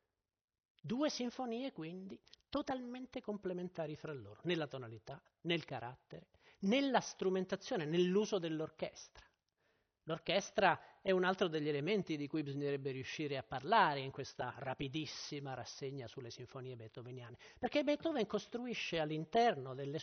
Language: Italian